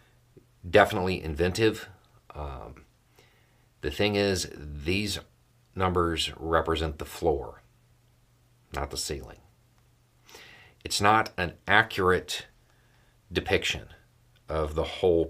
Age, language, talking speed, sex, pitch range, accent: 40-59, English, 85 wpm, male, 80-120 Hz, American